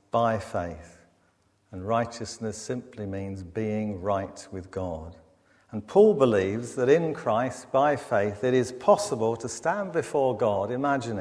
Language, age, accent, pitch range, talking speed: English, 50-69, British, 100-125 Hz, 140 wpm